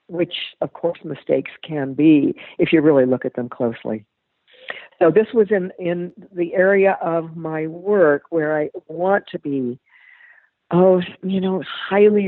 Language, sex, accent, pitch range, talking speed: English, female, American, 135-175 Hz, 155 wpm